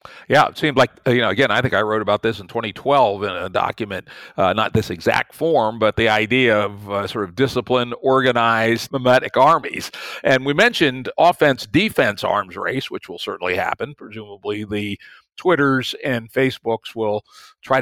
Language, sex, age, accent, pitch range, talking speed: English, male, 50-69, American, 110-130 Hz, 170 wpm